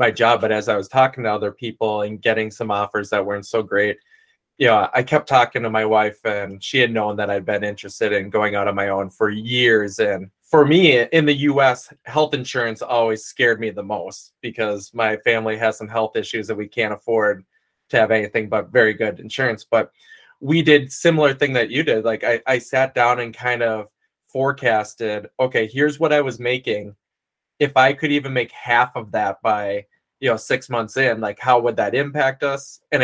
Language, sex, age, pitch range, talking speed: English, male, 20-39, 110-145 Hz, 210 wpm